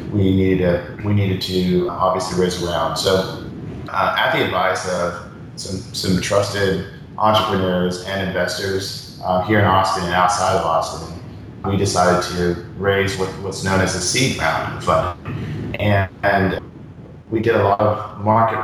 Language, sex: English, male